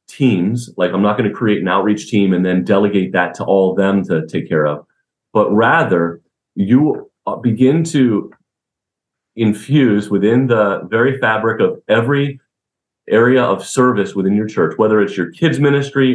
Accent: American